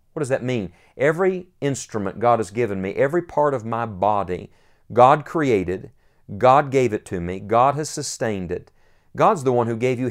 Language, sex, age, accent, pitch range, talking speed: English, male, 50-69, American, 110-145 Hz, 190 wpm